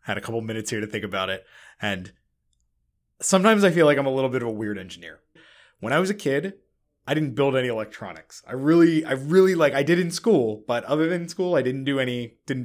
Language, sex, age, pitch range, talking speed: English, male, 20-39, 120-155 Hz, 235 wpm